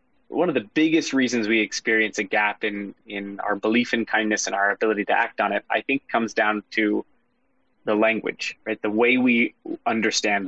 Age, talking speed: 20-39, 195 wpm